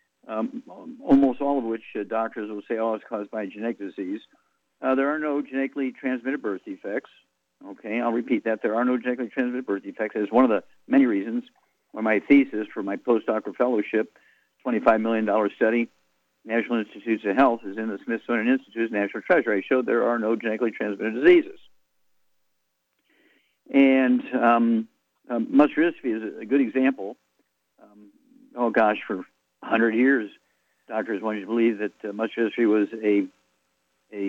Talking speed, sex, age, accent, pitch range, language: 170 wpm, male, 50-69, American, 105-130 Hz, English